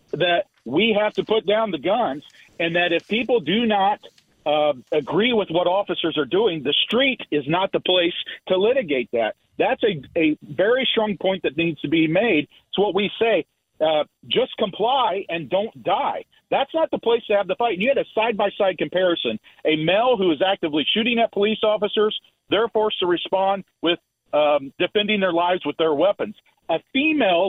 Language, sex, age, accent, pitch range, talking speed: English, male, 50-69, American, 155-210 Hz, 190 wpm